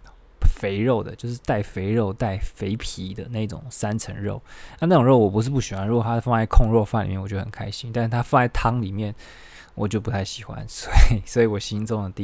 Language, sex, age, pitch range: Chinese, male, 20-39, 100-120 Hz